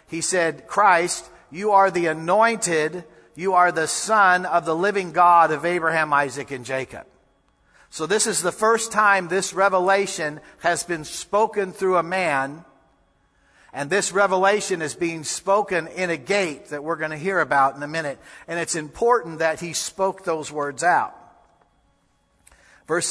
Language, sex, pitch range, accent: English, male, 155-190 Hz, American